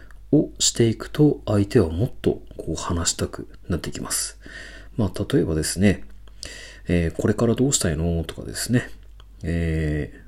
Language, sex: Japanese, male